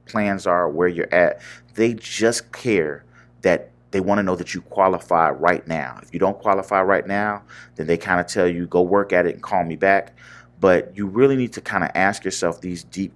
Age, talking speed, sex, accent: 30-49, 225 wpm, male, American